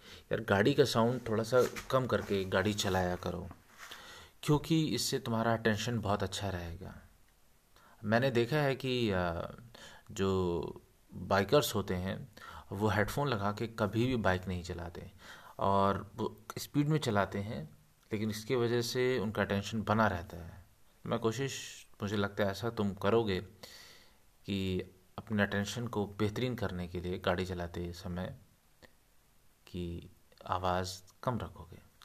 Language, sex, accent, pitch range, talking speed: Hindi, male, native, 95-120 Hz, 135 wpm